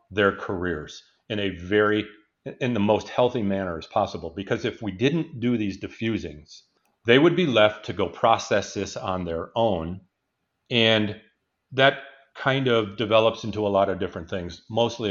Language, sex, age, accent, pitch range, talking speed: English, male, 40-59, American, 95-115 Hz, 165 wpm